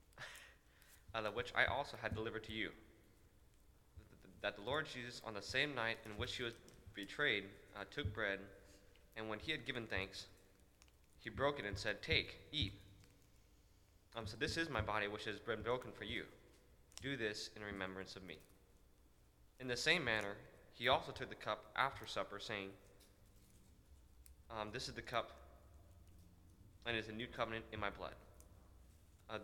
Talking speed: 165 wpm